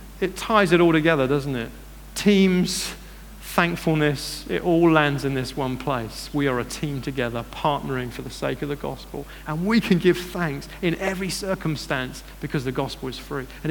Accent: British